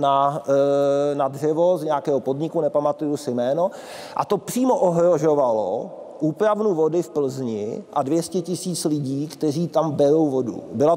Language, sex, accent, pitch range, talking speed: Czech, male, native, 135-160 Hz, 140 wpm